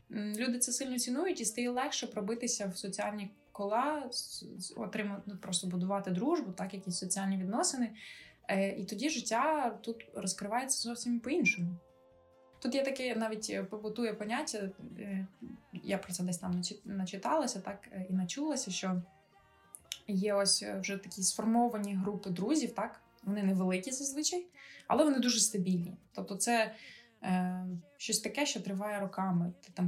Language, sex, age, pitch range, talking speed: Ukrainian, female, 20-39, 190-245 Hz, 135 wpm